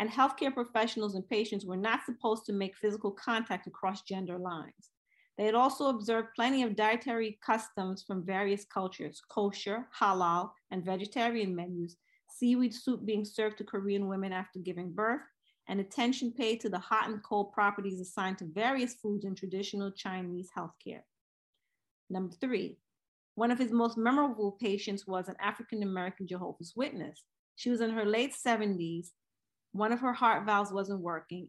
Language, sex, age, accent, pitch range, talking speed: English, female, 40-59, American, 190-230 Hz, 160 wpm